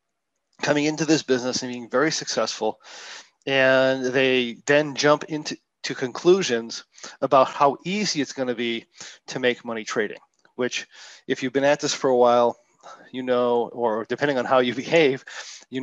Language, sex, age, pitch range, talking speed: English, male, 40-59, 125-155 Hz, 160 wpm